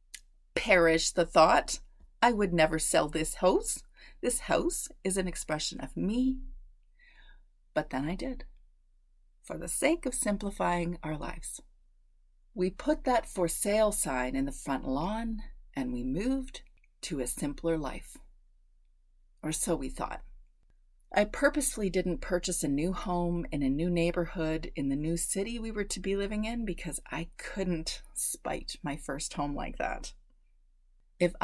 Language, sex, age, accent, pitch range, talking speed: English, female, 30-49, American, 140-195 Hz, 150 wpm